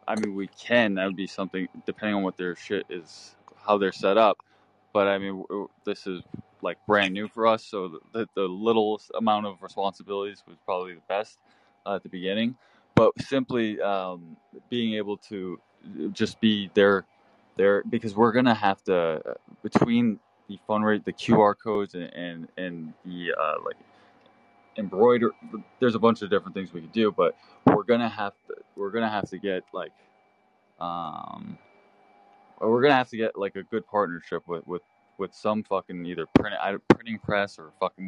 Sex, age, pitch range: male, 20-39, 95-110 Hz